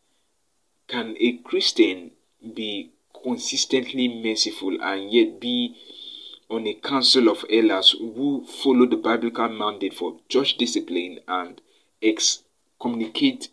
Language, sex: English, male